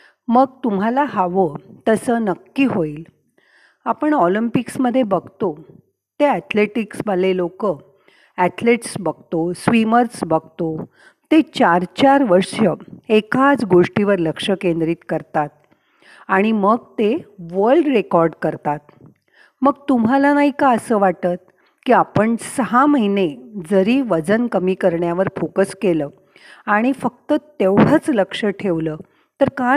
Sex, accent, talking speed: female, native, 110 wpm